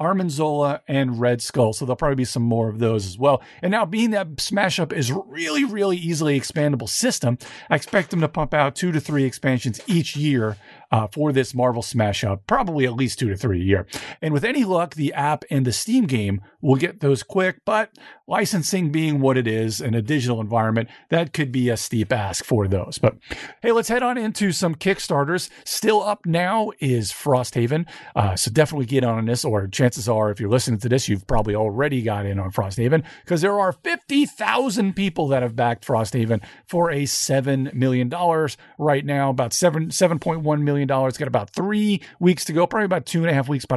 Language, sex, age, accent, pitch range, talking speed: English, male, 40-59, American, 120-175 Hz, 210 wpm